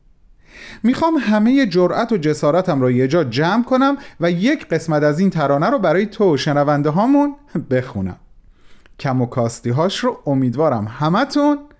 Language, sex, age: Persian, male, 30-49